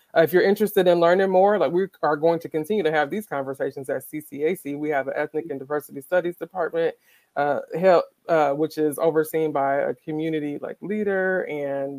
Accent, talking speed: American, 190 wpm